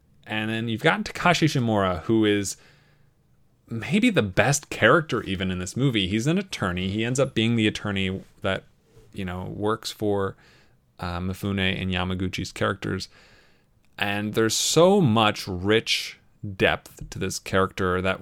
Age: 20-39